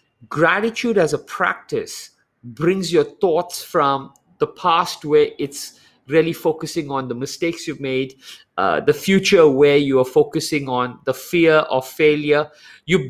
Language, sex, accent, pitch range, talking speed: English, male, Indian, 140-190 Hz, 145 wpm